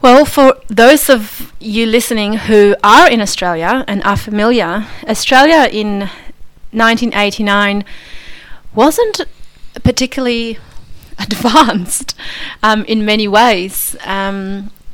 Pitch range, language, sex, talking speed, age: 195-230 Hz, English, female, 95 wpm, 30-49